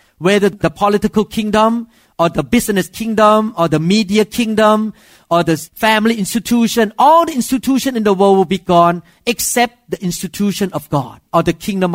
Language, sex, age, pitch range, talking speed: English, male, 50-69, 175-230 Hz, 165 wpm